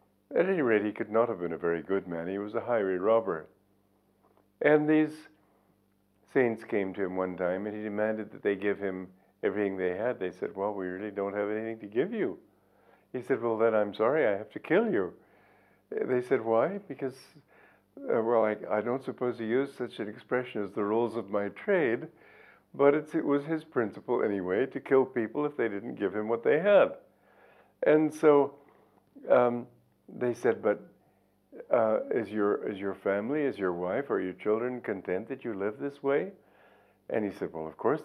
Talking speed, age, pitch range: 200 wpm, 50-69, 100-135 Hz